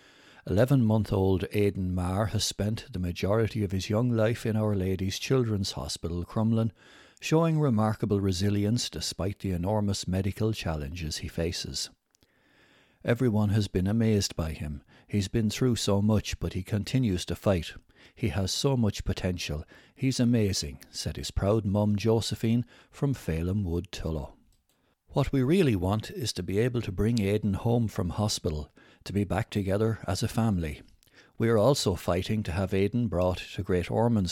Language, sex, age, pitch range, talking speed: English, male, 60-79, 90-110 Hz, 160 wpm